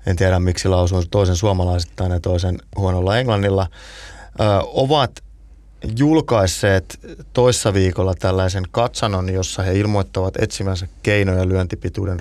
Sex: male